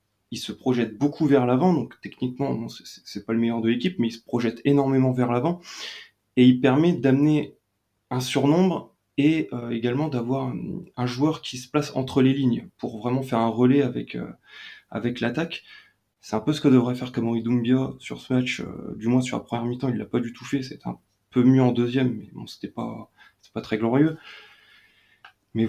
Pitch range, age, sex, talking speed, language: 115-140 Hz, 20-39, male, 215 wpm, French